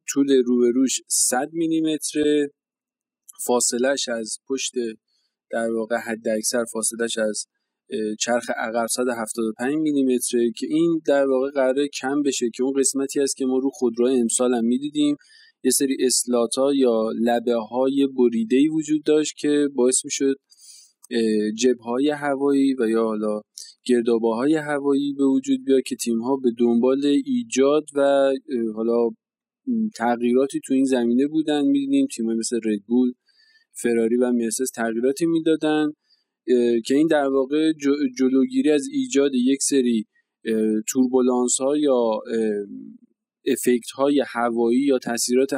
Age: 20-39